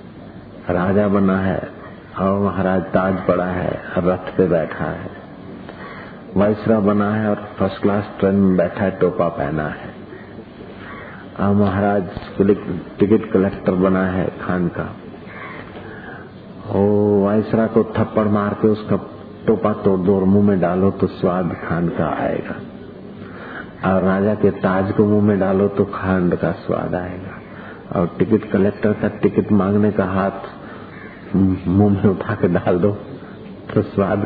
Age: 50-69